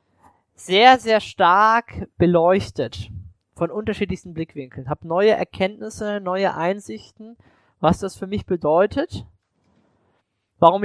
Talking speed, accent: 105 wpm, German